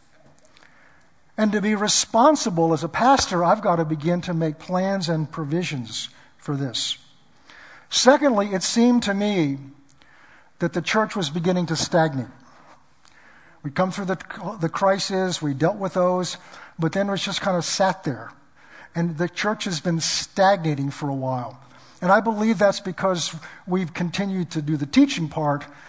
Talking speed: 160 wpm